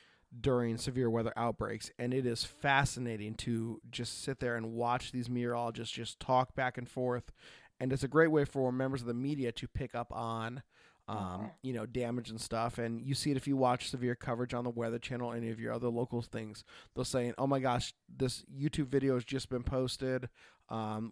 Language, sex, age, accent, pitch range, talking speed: English, male, 20-39, American, 115-125 Hz, 205 wpm